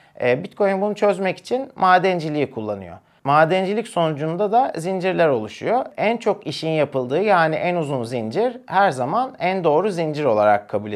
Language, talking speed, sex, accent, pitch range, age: Turkish, 140 wpm, male, native, 135-195 Hz, 40-59